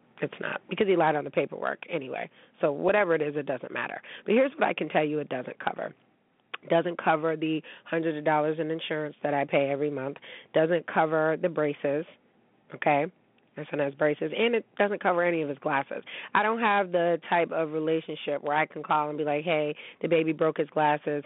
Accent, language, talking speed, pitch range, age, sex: American, English, 215 wpm, 150-170 Hz, 30-49, female